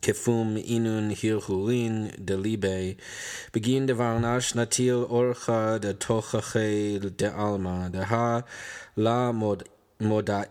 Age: 20-39